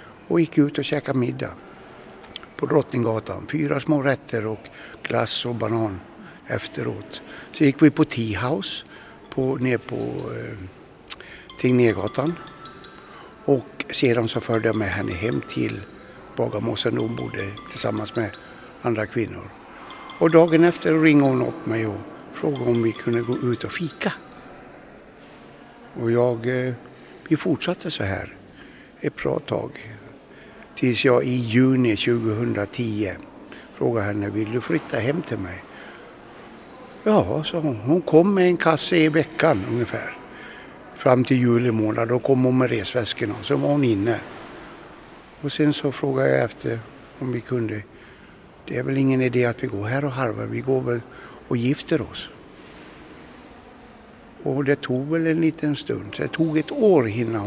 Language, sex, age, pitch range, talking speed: Swedish, male, 60-79, 115-150 Hz, 150 wpm